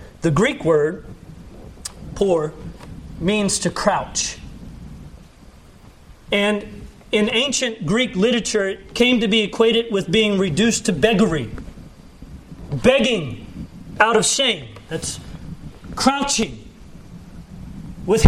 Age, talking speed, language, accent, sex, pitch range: 40-59, 95 wpm, English, American, male, 210-255 Hz